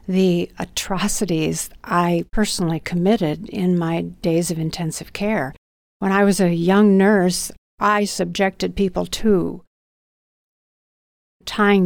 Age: 60-79